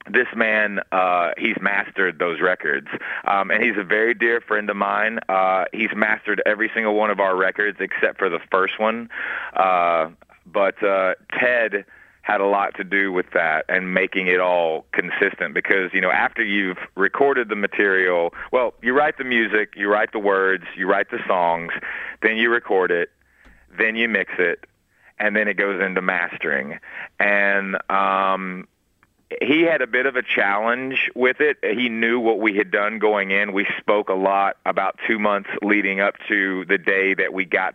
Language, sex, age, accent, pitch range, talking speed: English, male, 30-49, American, 95-110 Hz, 185 wpm